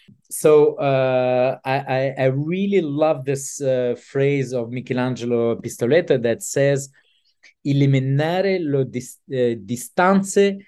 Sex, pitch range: male, 125-155 Hz